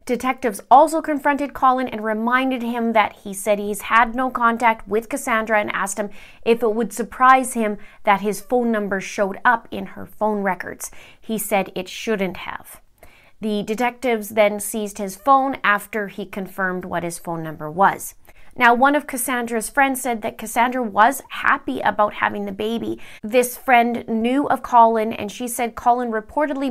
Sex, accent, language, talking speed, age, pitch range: female, American, English, 175 wpm, 30-49, 205-245 Hz